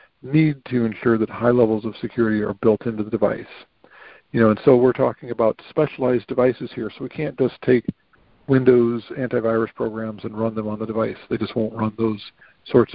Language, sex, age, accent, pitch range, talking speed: English, male, 50-69, American, 110-130 Hz, 200 wpm